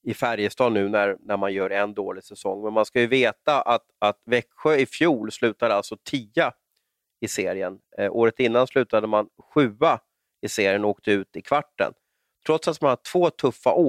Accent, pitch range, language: native, 105-135 Hz, Swedish